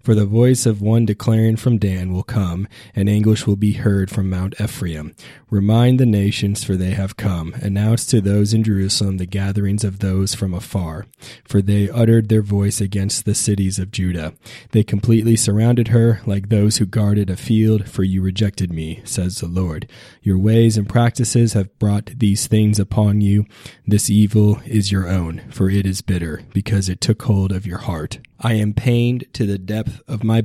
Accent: American